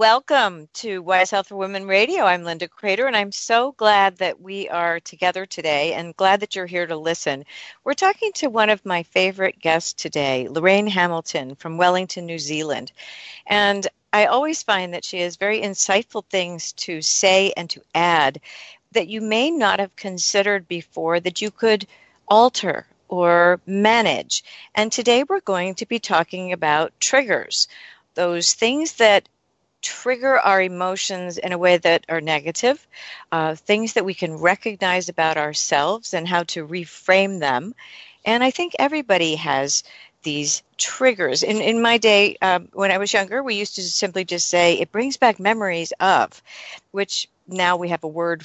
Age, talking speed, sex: 50-69, 170 wpm, female